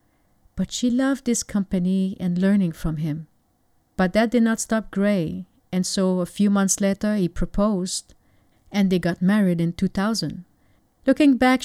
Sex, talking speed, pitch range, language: female, 160 wpm, 170-215 Hz, English